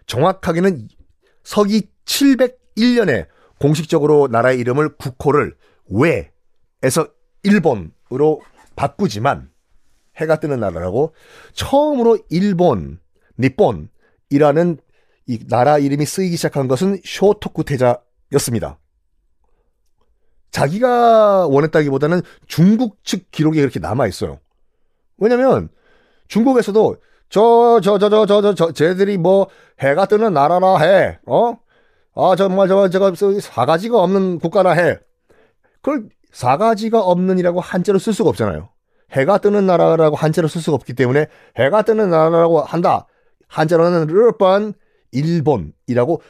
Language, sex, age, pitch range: Korean, male, 40-59, 140-205 Hz